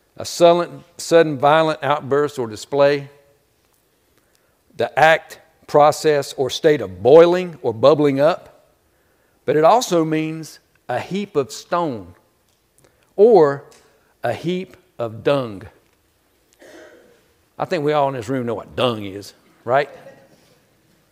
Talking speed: 115 wpm